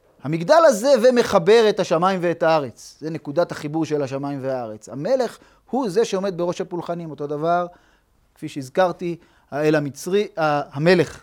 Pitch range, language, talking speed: 135-175 Hz, Hebrew, 135 wpm